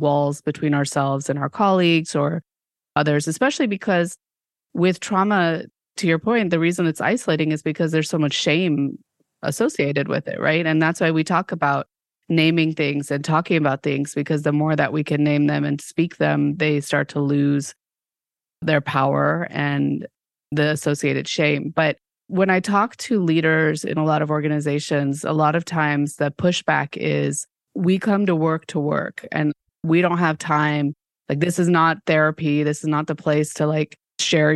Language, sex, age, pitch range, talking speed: English, female, 30-49, 145-175 Hz, 180 wpm